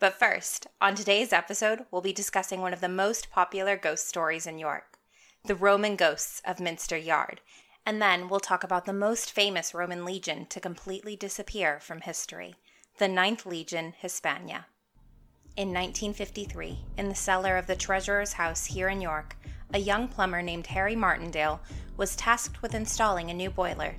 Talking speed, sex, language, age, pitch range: 170 wpm, female, English, 20-39, 170-200 Hz